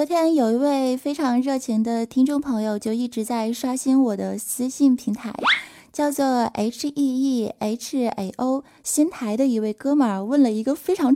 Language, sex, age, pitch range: Chinese, female, 20-39, 230-290 Hz